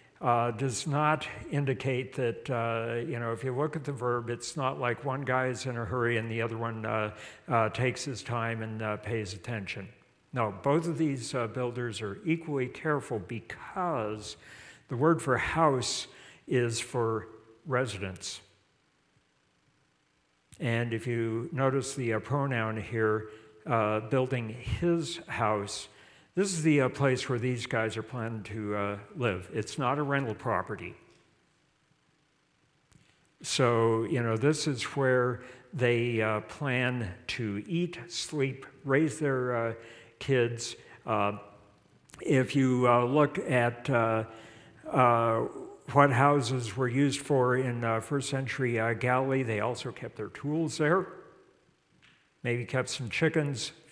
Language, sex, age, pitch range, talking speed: English, male, 60-79, 115-140 Hz, 140 wpm